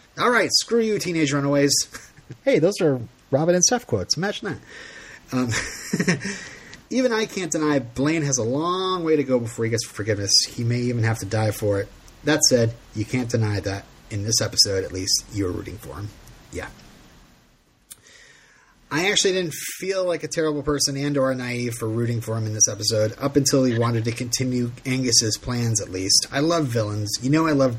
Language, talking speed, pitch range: English, 195 wpm, 105-135 Hz